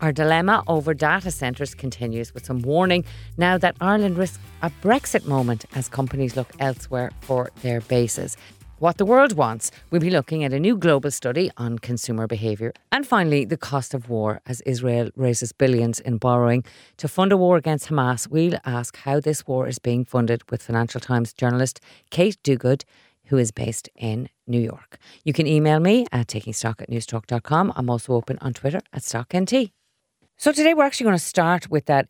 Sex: female